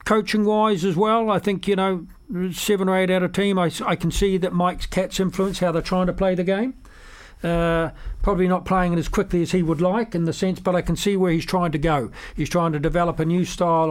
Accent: British